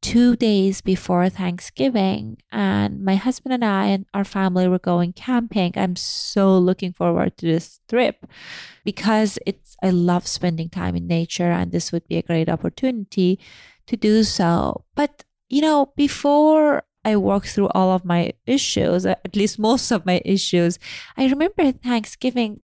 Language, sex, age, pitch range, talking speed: English, female, 20-39, 190-250 Hz, 160 wpm